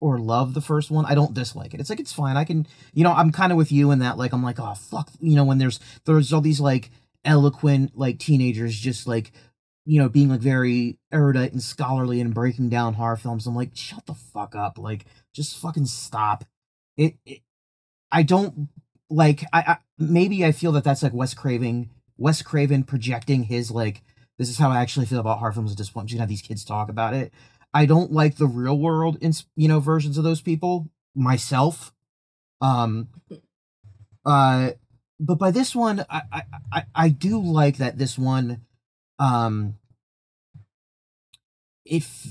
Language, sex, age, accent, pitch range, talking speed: English, male, 30-49, American, 115-150 Hz, 190 wpm